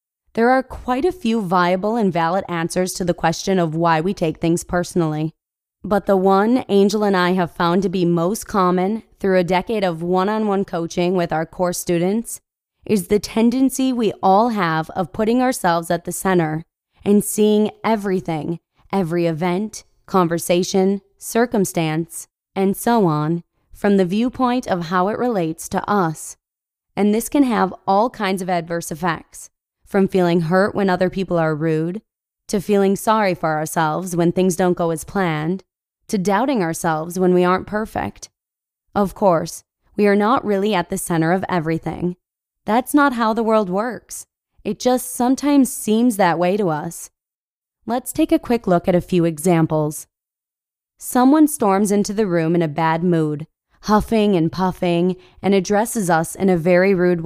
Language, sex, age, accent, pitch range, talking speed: English, female, 20-39, American, 170-210 Hz, 165 wpm